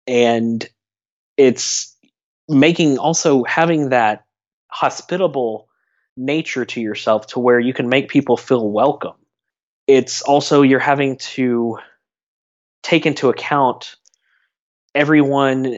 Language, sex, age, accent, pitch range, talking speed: English, male, 20-39, American, 115-135 Hz, 105 wpm